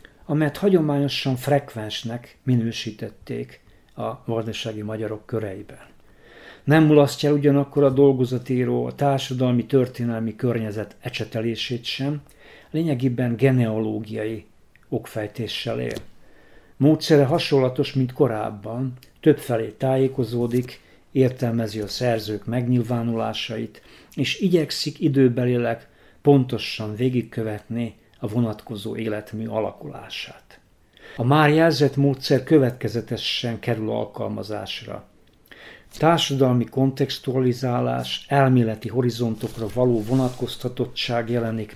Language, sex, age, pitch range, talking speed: Hungarian, male, 50-69, 110-135 Hz, 80 wpm